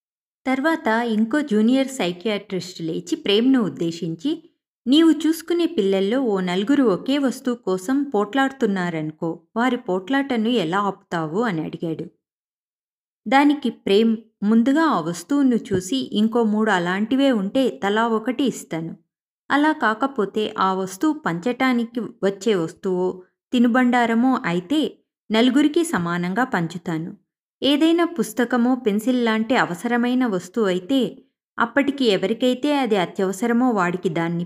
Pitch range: 195-265 Hz